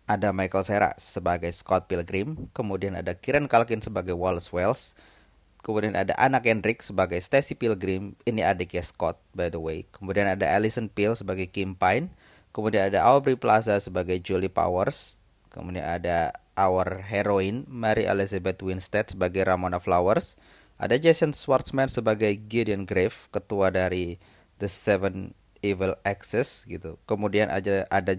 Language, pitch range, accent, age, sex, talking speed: Indonesian, 95-120 Hz, native, 20-39, male, 140 wpm